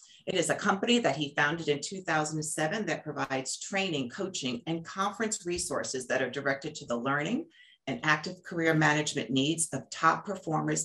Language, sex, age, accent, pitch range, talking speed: English, female, 40-59, American, 140-185 Hz, 165 wpm